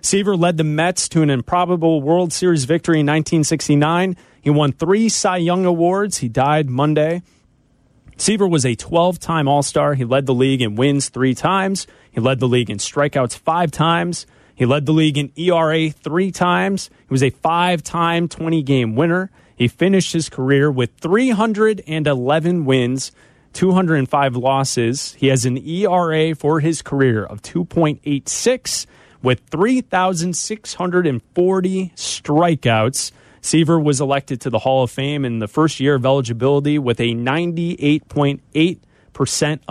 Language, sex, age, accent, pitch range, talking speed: English, male, 30-49, American, 130-175 Hz, 140 wpm